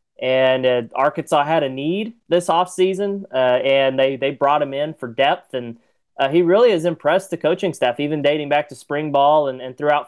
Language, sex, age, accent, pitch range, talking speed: English, male, 30-49, American, 130-170 Hz, 215 wpm